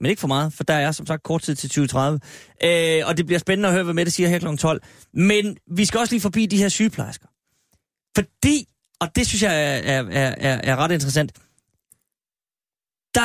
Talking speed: 220 wpm